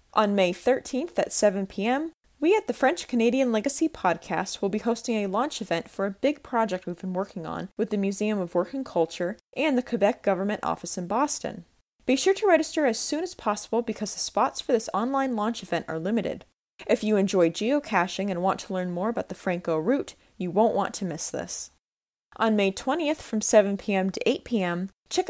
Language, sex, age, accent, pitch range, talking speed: English, female, 10-29, American, 190-260 Hz, 205 wpm